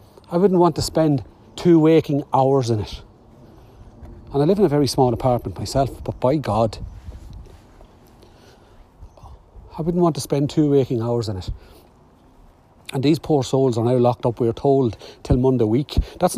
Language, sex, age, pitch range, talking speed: English, male, 40-59, 95-140 Hz, 170 wpm